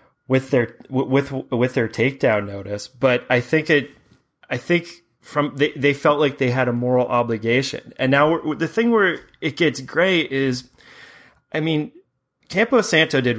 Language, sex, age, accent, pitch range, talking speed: English, male, 30-49, American, 115-140 Hz, 165 wpm